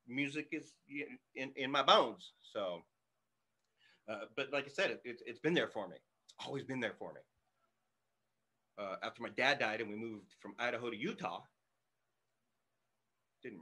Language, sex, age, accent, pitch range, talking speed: English, male, 30-49, American, 115-145 Hz, 170 wpm